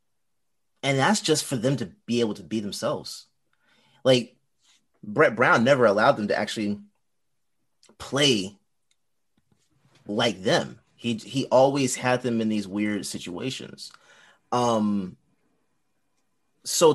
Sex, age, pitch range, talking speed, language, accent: male, 30-49, 105-135 Hz, 115 wpm, English, American